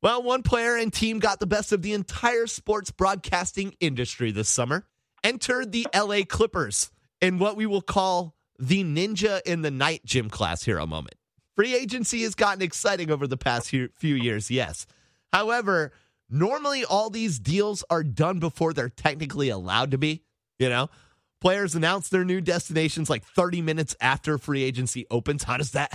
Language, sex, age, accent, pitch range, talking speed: English, male, 30-49, American, 140-210 Hz, 175 wpm